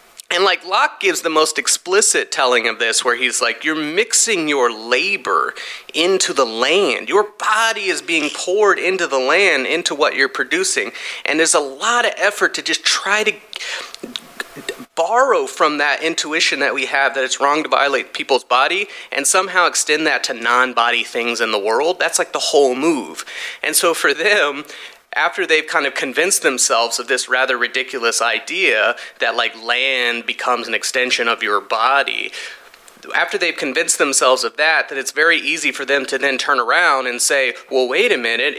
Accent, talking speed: American, 180 wpm